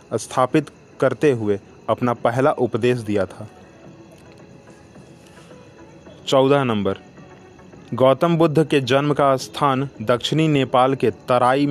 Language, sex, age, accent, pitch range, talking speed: Hindi, male, 30-49, native, 120-150 Hz, 100 wpm